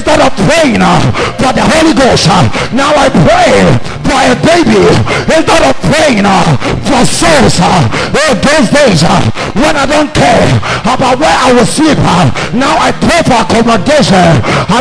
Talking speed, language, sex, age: 155 wpm, English, male, 50-69